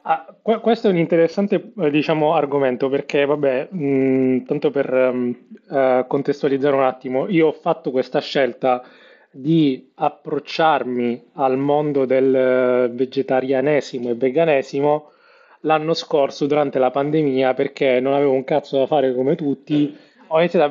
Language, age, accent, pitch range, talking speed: Italian, 20-39, native, 130-160 Hz, 135 wpm